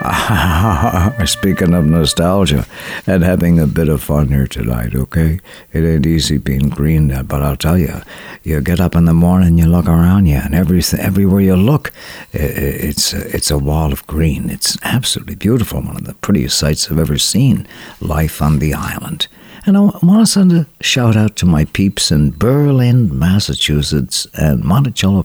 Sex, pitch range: male, 75-105 Hz